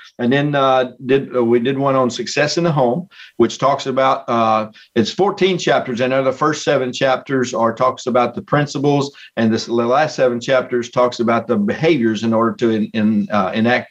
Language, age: English, 50-69